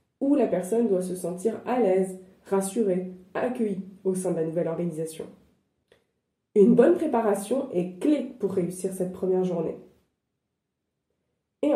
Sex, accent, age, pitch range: female, French, 20-39, 185-245 Hz